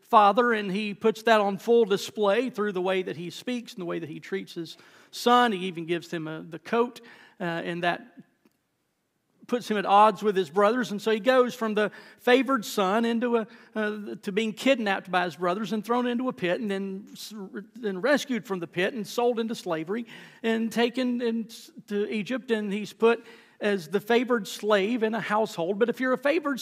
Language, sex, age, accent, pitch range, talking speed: English, male, 40-59, American, 185-235 Hz, 205 wpm